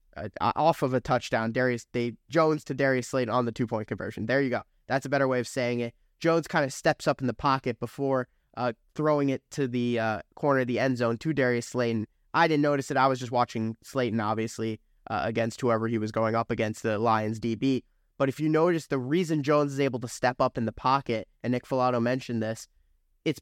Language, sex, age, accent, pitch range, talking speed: English, male, 10-29, American, 115-140 Hz, 230 wpm